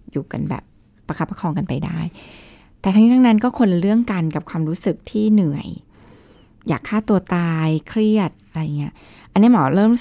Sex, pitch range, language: female, 155-195 Hz, Thai